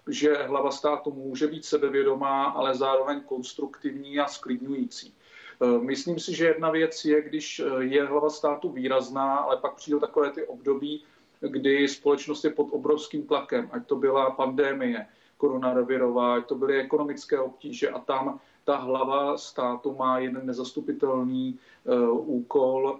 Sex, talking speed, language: male, 140 wpm, Czech